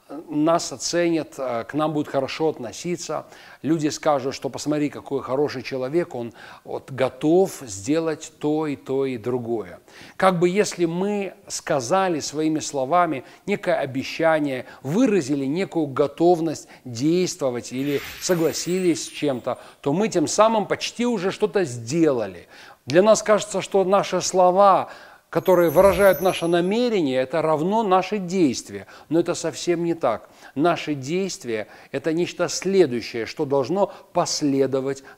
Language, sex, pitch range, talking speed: Russian, male, 140-180 Hz, 130 wpm